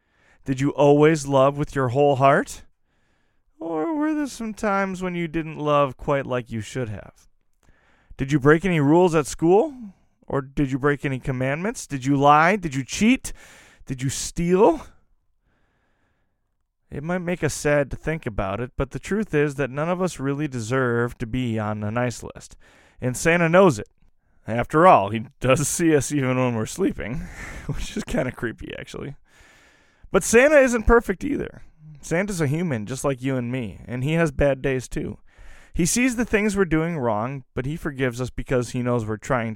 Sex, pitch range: male, 120-165 Hz